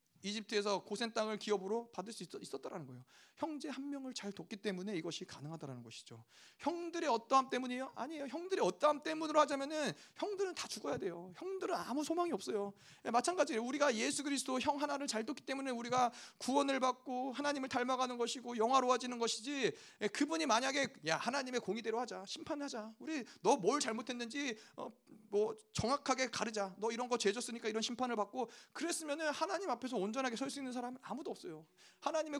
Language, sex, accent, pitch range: Korean, male, native, 210-280 Hz